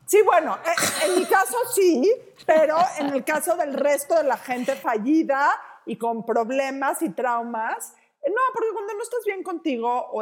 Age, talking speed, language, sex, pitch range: 40-59, 175 wpm, Spanish, female, 190-275 Hz